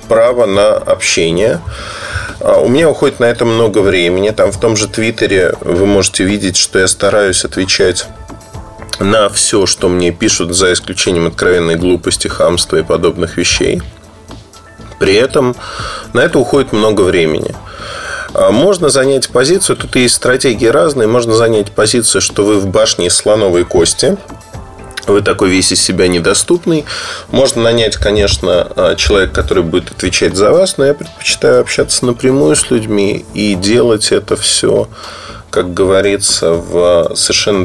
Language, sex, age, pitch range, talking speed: Russian, male, 20-39, 95-135 Hz, 140 wpm